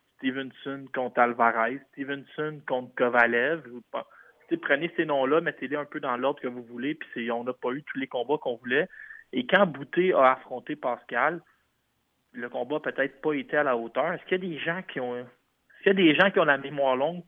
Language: French